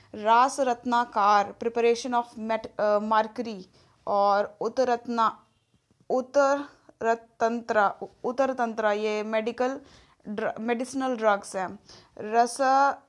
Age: 20-39